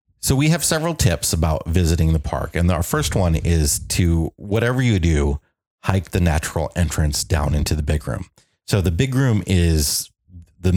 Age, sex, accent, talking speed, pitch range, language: 30-49, male, American, 185 wpm, 80-95 Hz, English